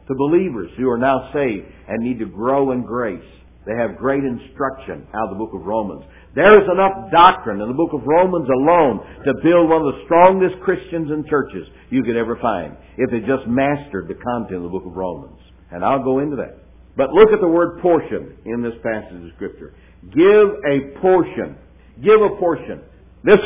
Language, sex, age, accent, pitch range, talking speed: English, male, 60-79, American, 110-170 Hz, 200 wpm